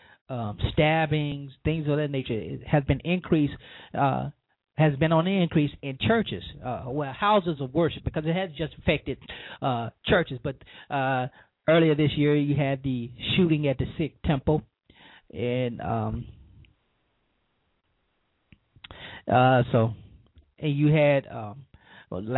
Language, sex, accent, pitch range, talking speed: English, male, American, 120-150 Hz, 140 wpm